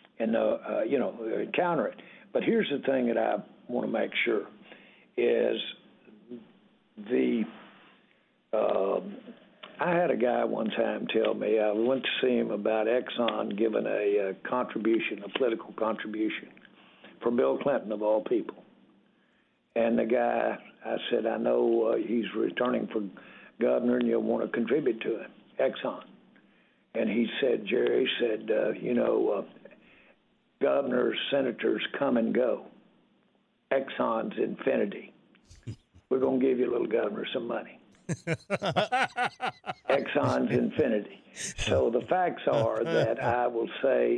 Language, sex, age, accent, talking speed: English, male, 60-79, American, 140 wpm